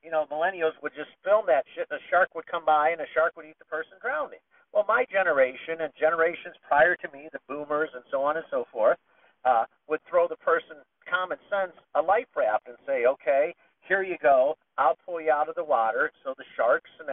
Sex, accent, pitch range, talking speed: male, American, 145-190 Hz, 230 wpm